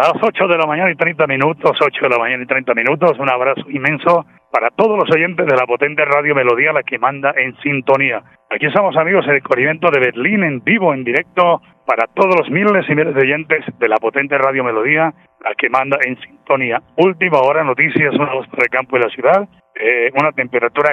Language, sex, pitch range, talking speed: Spanish, male, 130-170 Hz, 215 wpm